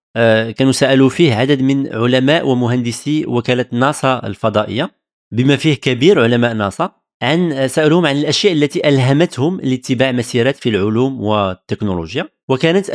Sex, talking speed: male, 125 wpm